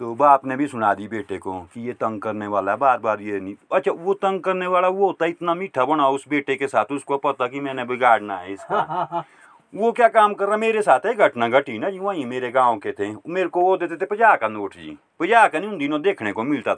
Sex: male